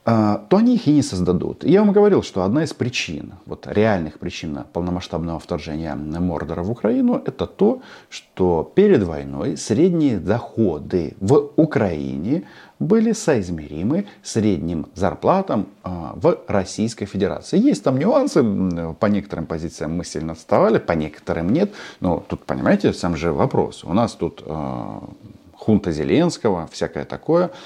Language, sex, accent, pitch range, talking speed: Russian, male, native, 80-115 Hz, 135 wpm